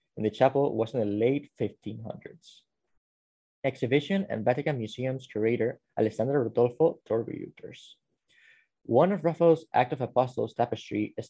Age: 20-39